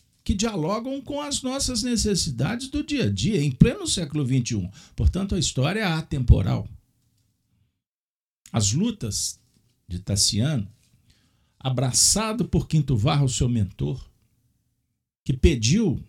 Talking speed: 115 wpm